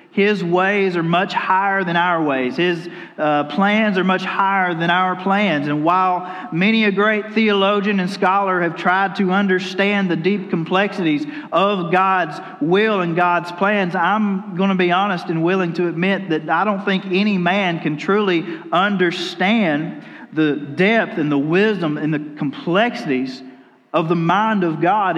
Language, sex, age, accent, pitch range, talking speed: English, male, 40-59, American, 175-210 Hz, 165 wpm